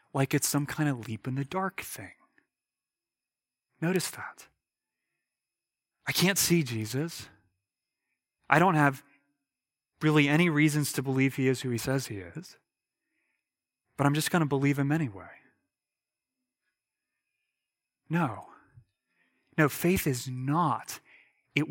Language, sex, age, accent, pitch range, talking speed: English, male, 30-49, American, 125-170 Hz, 125 wpm